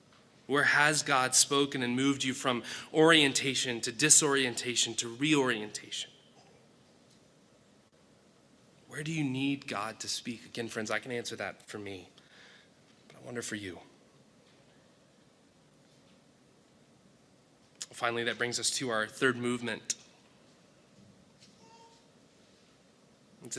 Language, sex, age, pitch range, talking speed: English, male, 20-39, 115-140 Hz, 105 wpm